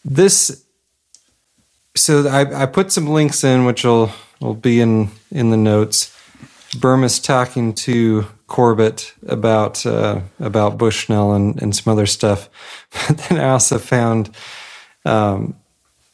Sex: male